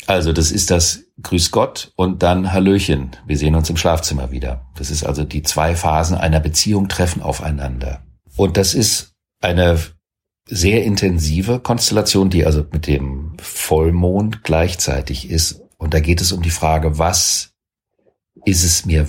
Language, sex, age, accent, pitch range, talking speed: German, male, 40-59, German, 75-100 Hz, 155 wpm